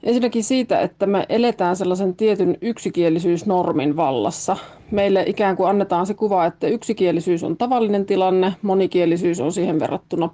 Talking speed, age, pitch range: 140 wpm, 30-49, 175-210 Hz